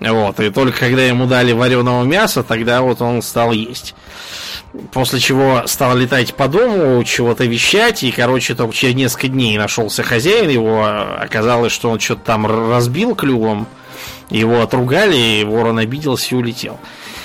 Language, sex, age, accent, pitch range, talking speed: Russian, male, 20-39, native, 115-130 Hz, 155 wpm